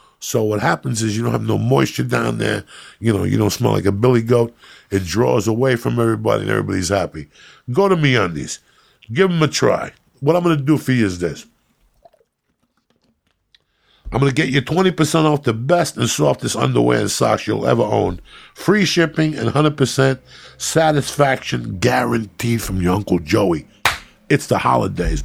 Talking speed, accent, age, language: 175 wpm, American, 50-69, English